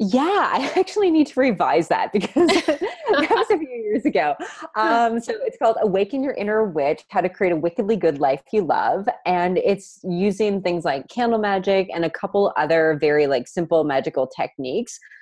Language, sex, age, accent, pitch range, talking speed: English, female, 30-49, American, 150-190 Hz, 185 wpm